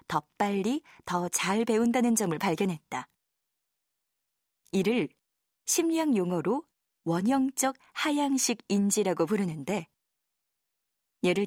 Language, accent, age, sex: Korean, native, 20-39, female